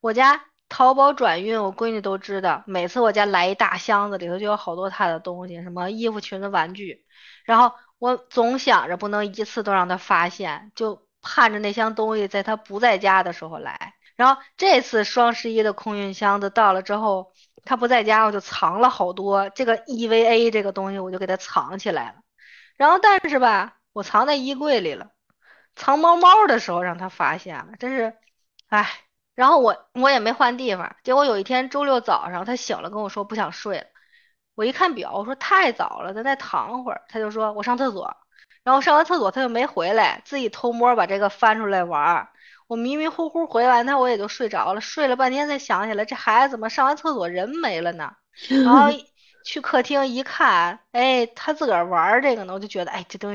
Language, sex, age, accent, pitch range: Chinese, female, 20-39, native, 200-265 Hz